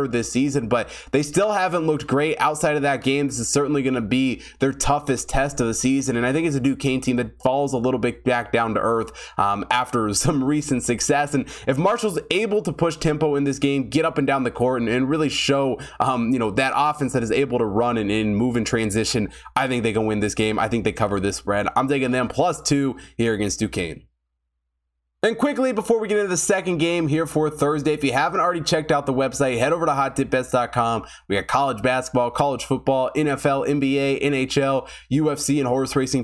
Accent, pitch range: American, 110-140 Hz